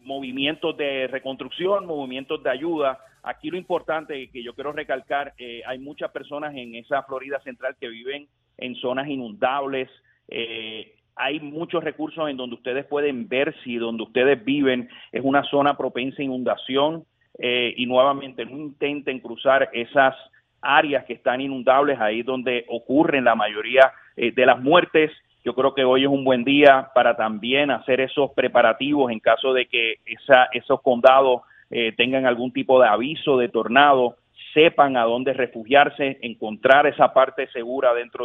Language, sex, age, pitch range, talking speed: Spanish, male, 40-59, 125-145 Hz, 160 wpm